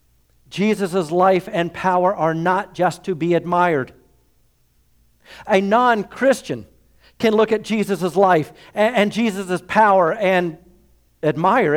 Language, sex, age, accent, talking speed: English, male, 50-69, American, 110 wpm